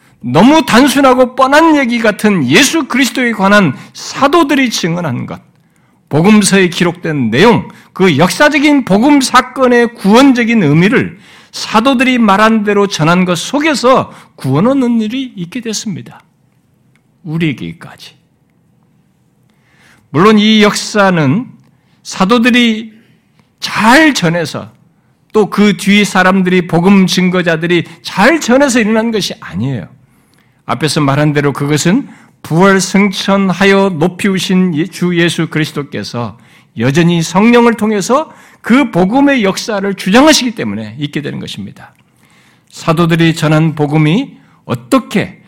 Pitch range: 165-235 Hz